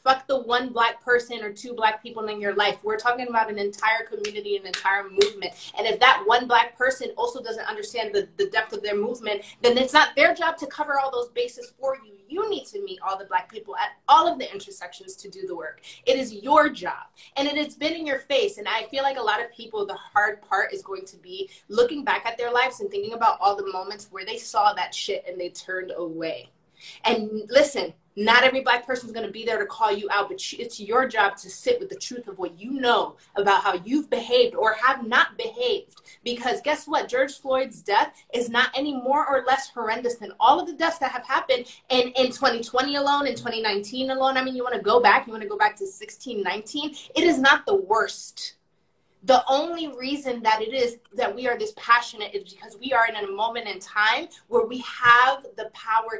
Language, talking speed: English, 235 wpm